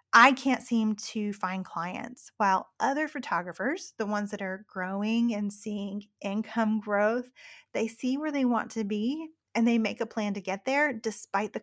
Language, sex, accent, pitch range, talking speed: English, female, American, 205-250 Hz, 180 wpm